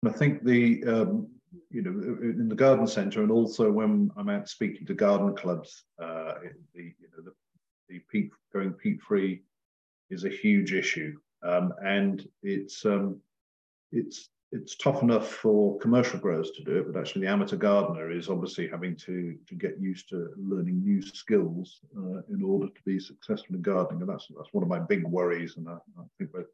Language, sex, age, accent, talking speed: English, male, 50-69, British, 190 wpm